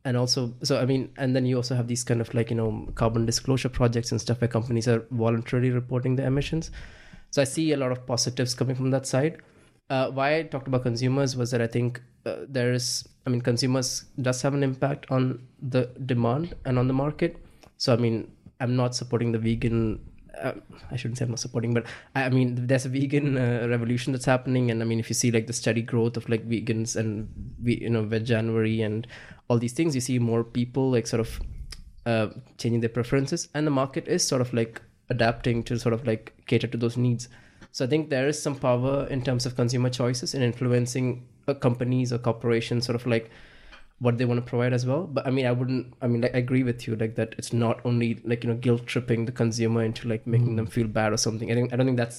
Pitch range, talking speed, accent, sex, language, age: 115-130 Hz, 240 wpm, Indian, male, English, 20-39